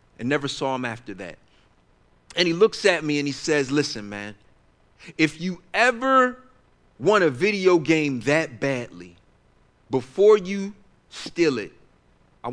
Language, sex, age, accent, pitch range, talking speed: English, male, 40-59, American, 115-160 Hz, 145 wpm